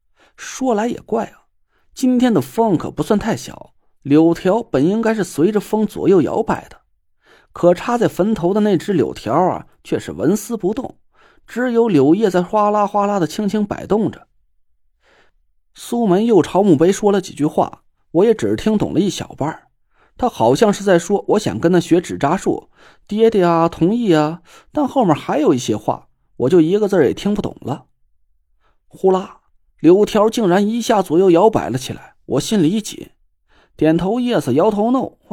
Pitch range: 150-225 Hz